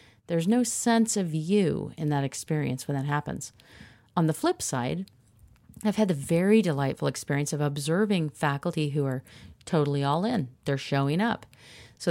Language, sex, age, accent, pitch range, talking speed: English, female, 40-59, American, 135-180 Hz, 165 wpm